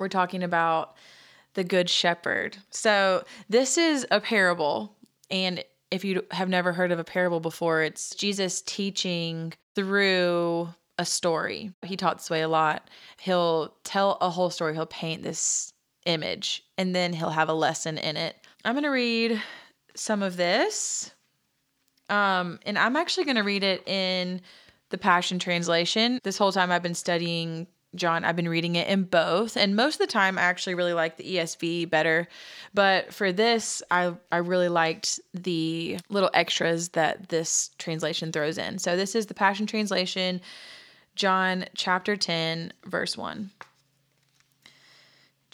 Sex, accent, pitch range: female, American, 170-200 Hz